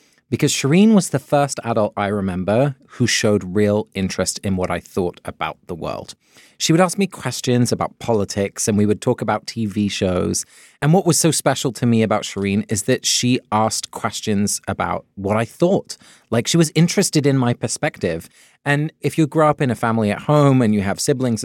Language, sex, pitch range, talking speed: English, male, 105-145 Hz, 200 wpm